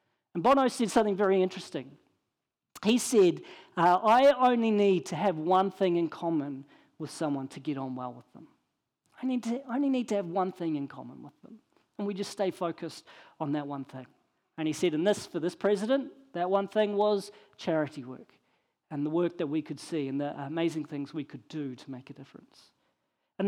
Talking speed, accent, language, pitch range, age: 210 wpm, Australian, English, 175-255 Hz, 40-59